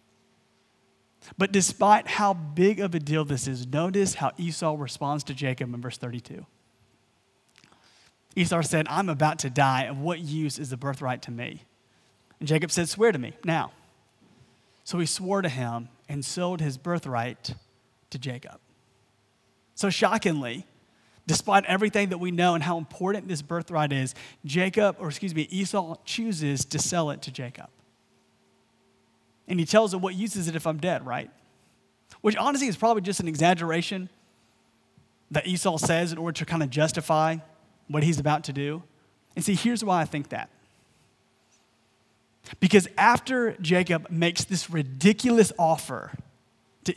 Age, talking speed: 30-49, 155 wpm